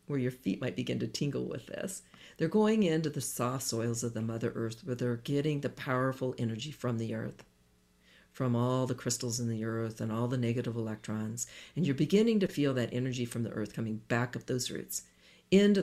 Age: 50-69